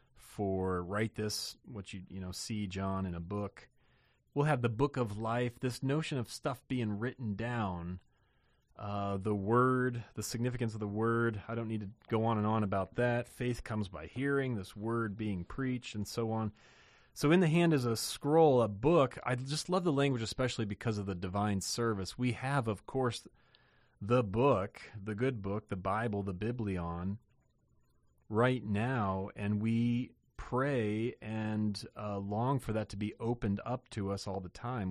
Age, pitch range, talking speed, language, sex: 30-49, 100-125 Hz, 180 wpm, English, male